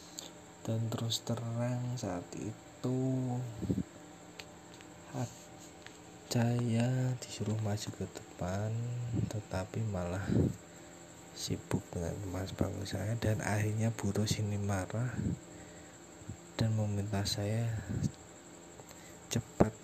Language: Indonesian